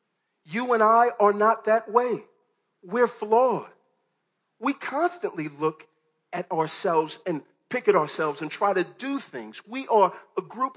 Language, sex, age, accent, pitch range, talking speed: English, male, 40-59, American, 200-280 Hz, 150 wpm